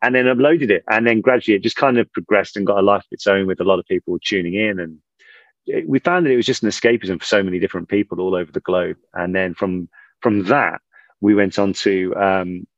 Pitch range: 90-115 Hz